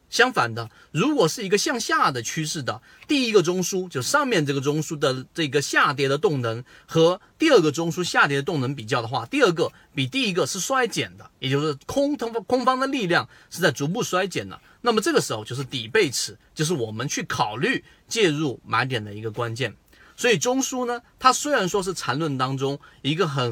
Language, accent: Chinese, native